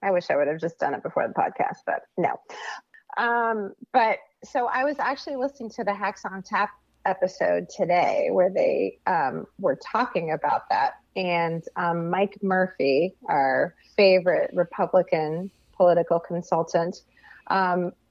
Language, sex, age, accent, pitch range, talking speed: English, female, 30-49, American, 170-215 Hz, 145 wpm